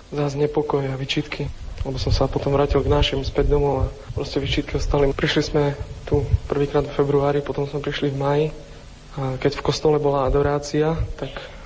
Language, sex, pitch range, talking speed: Slovak, male, 135-150 Hz, 175 wpm